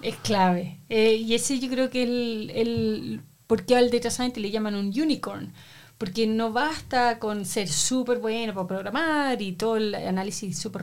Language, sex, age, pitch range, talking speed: Spanish, female, 30-49, 185-240 Hz, 190 wpm